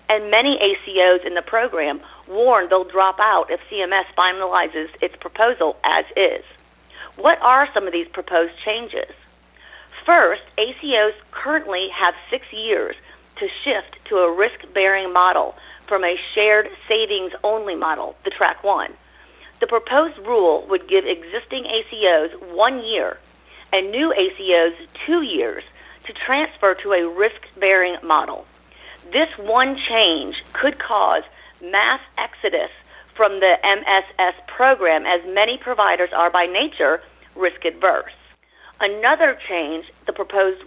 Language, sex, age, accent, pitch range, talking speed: English, female, 40-59, American, 180-255 Hz, 130 wpm